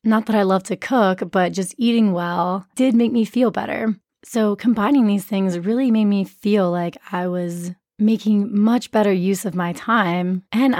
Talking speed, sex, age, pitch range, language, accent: 190 wpm, female, 20-39, 180-225 Hz, English, American